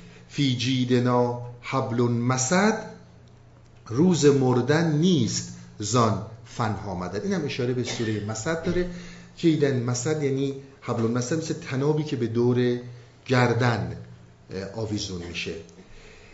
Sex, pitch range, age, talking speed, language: male, 110-150 Hz, 50-69, 110 wpm, Persian